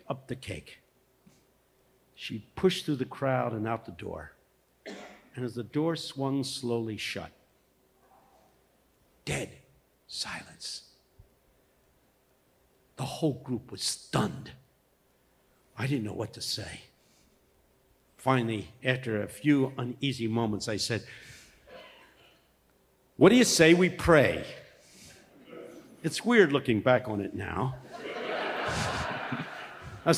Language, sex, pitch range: English, male, 115-145 Hz